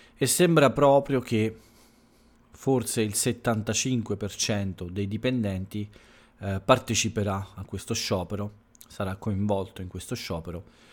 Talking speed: 105 wpm